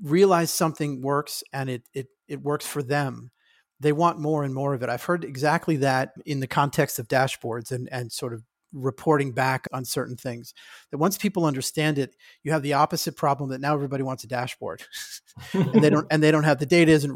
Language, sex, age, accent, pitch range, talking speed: English, male, 40-59, American, 130-155 Hz, 215 wpm